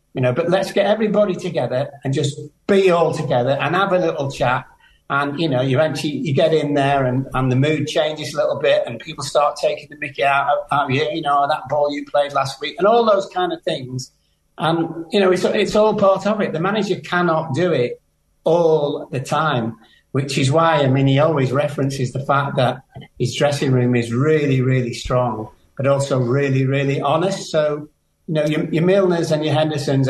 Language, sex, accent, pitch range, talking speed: English, male, British, 135-165 Hz, 210 wpm